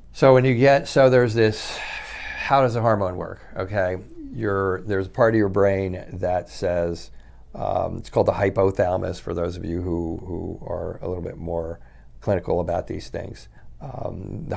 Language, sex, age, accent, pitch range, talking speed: English, male, 50-69, American, 90-110 Hz, 180 wpm